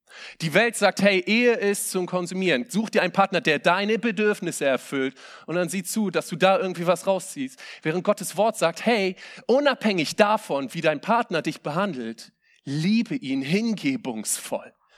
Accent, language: German, German